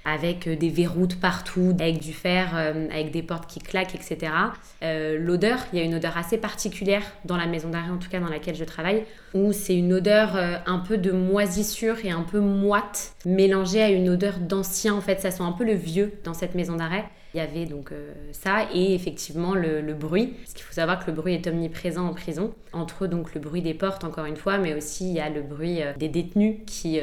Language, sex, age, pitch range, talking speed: French, female, 20-39, 165-195 Hz, 225 wpm